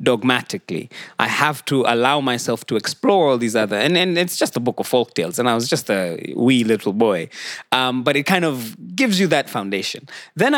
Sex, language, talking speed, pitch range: male, English, 215 wpm, 120-165 Hz